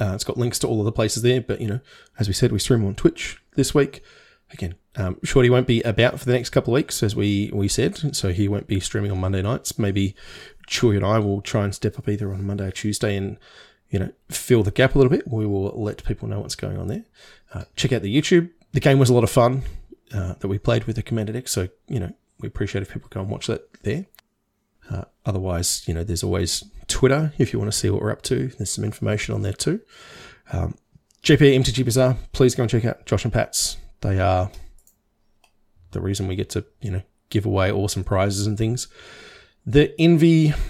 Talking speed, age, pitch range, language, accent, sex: 235 wpm, 20-39, 95-120 Hz, English, Australian, male